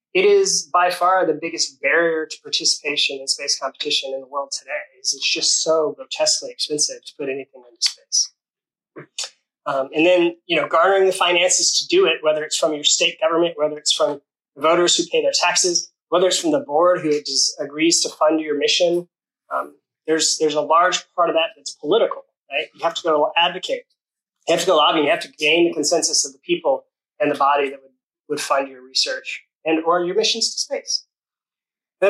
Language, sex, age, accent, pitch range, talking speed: English, male, 20-39, American, 155-210 Hz, 205 wpm